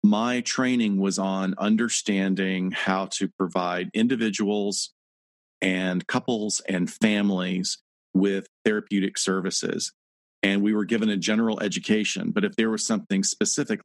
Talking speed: 125 wpm